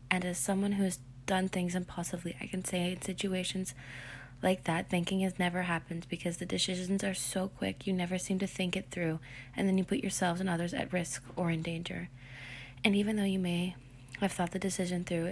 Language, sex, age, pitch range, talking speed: English, female, 20-39, 130-190 Hz, 210 wpm